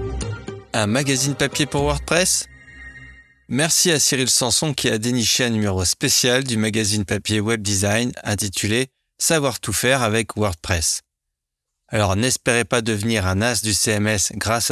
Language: French